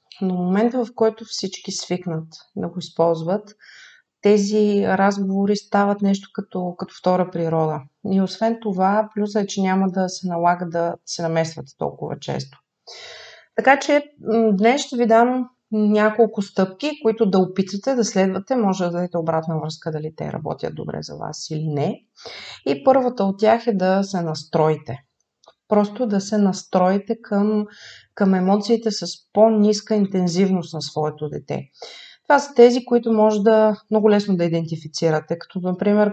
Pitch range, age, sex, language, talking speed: 170-215 Hz, 30-49, female, Bulgarian, 150 wpm